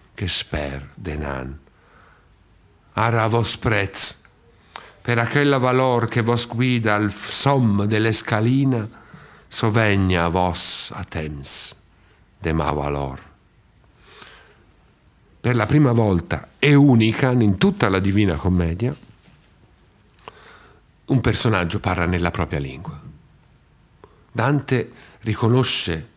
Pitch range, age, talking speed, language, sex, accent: 85-115 Hz, 50-69, 100 wpm, Italian, male, native